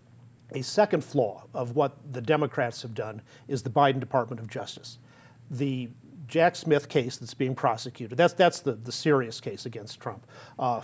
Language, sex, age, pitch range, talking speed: English, male, 40-59, 125-150 Hz, 170 wpm